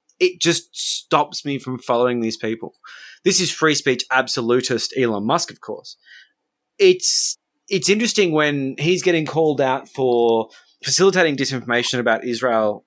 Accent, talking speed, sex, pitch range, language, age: Australian, 140 wpm, male, 115-180 Hz, English, 20-39